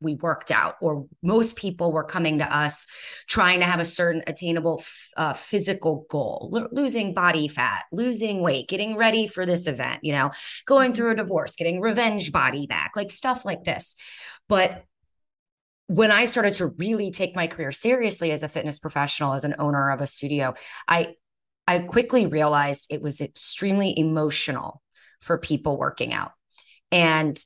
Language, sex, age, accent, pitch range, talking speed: English, female, 20-39, American, 145-185 Hz, 170 wpm